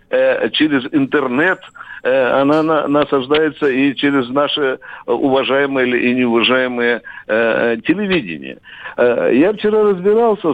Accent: native